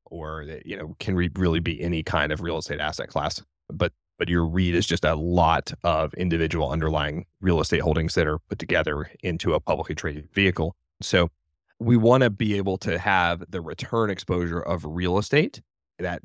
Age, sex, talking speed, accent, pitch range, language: 30-49, male, 195 wpm, American, 80-95 Hz, English